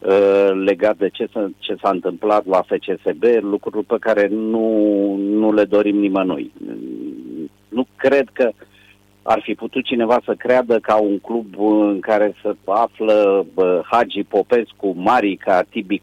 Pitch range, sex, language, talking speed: 100-115 Hz, male, Romanian, 140 wpm